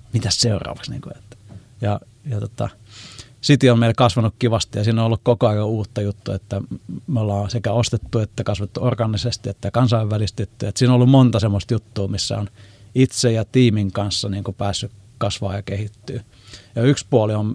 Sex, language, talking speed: male, Finnish, 170 wpm